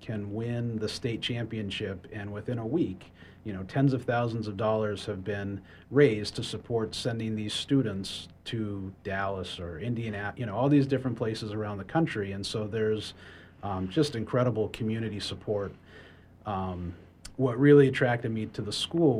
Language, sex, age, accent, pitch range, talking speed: English, male, 30-49, American, 95-115 Hz, 165 wpm